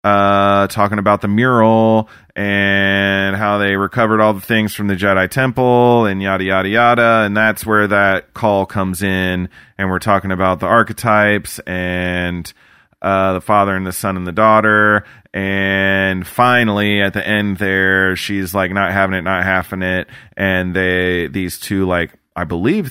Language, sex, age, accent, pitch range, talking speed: English, male, 30-49, American, 90-105 Hz, 170 wpm